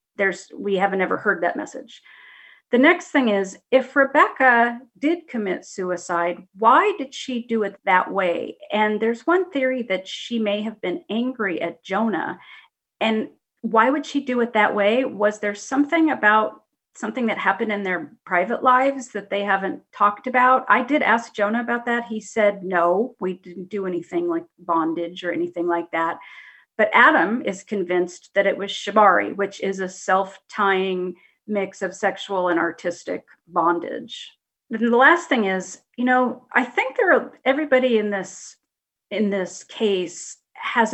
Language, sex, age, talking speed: English, female, 40-59, 165 wpm